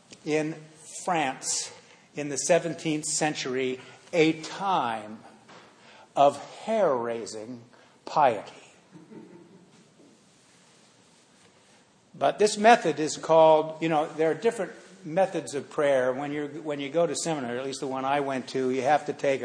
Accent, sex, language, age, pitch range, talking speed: American, male, English, 50-69, 130-155 Hz, 130 wpm